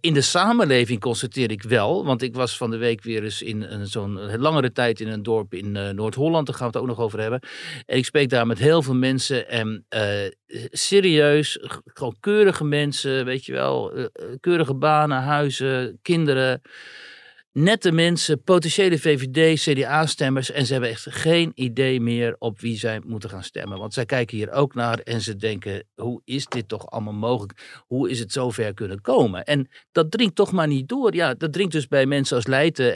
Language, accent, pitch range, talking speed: Dutch, Dutch, 115-155 Hz, 195 wpm